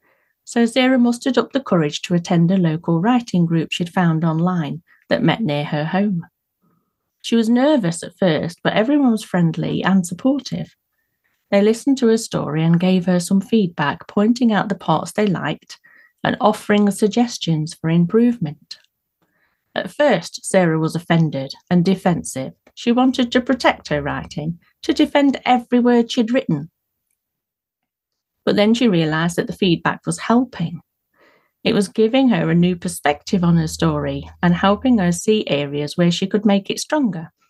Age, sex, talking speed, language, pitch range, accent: 40-59, female, 160 wpm, English, 165-240 Hz, British